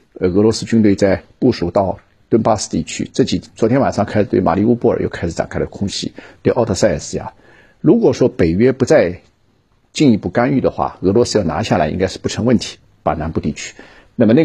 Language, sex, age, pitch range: Chinese, male, 50-69, 90-110 Hz